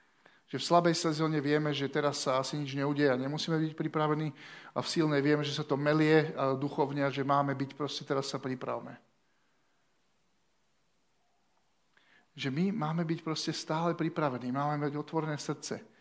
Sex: male